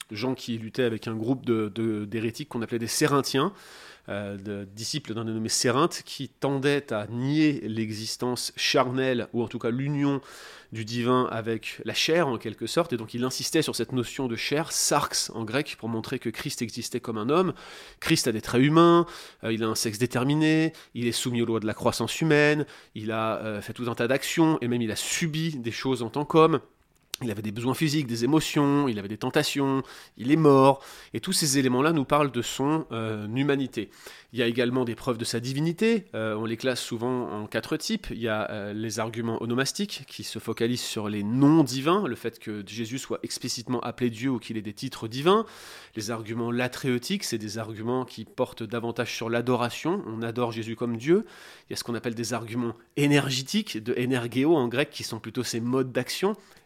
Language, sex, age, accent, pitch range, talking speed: French, male, 30-49, French, 115-140 Hz, 215 wpm